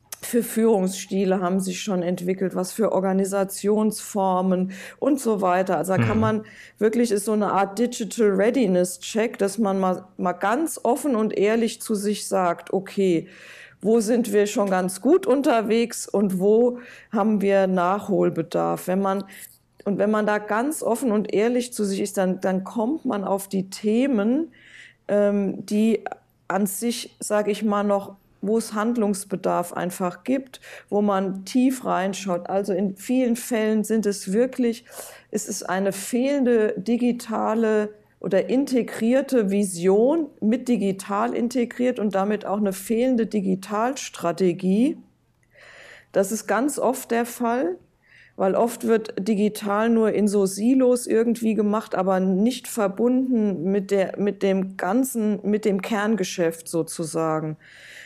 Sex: female